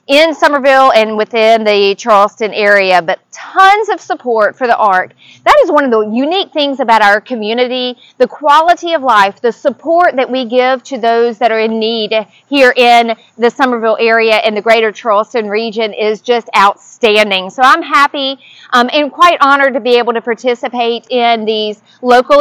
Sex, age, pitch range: female, 40-59, 225-285 Hz